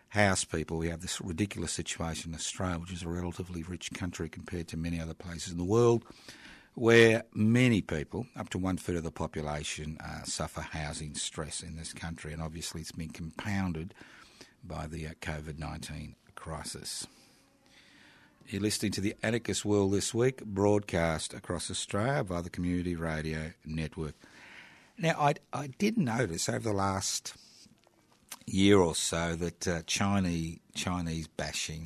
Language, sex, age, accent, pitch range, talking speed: English, male, 50-69, Australian, 80-100 Hz, 150 wpm